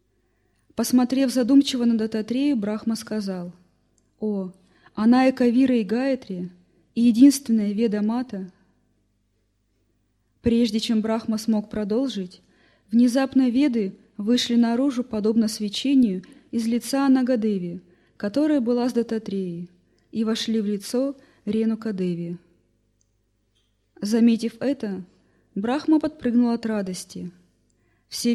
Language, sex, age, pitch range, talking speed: Russian, female, 20-39, 180-245 Hz, 95 wpm